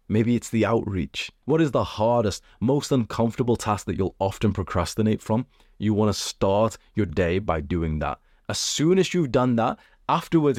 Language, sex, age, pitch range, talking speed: English, male, 20-39, 95-120 Hz, 175 wpm